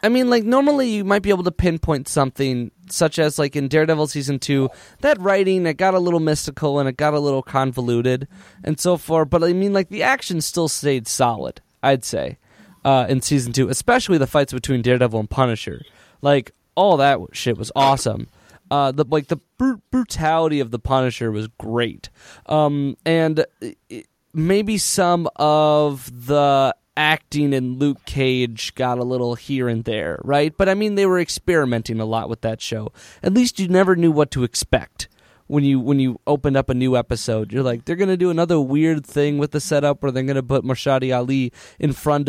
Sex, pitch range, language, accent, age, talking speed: male, 130-165 Hz, English, American, 20-39, 200 wpm